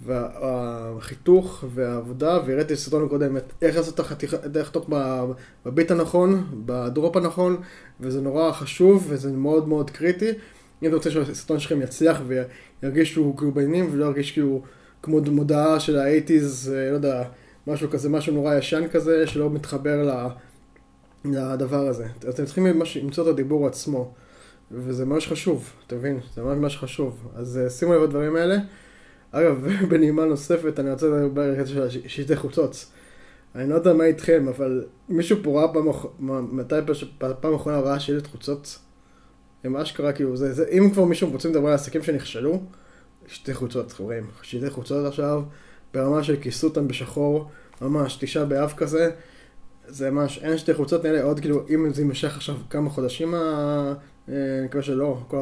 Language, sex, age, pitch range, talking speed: Hebrew, male, 20-39, 130-160 Hz, 155 wpm